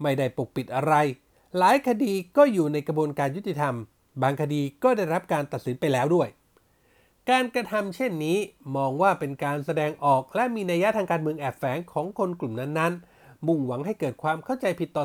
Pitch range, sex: 140-195 Hz, male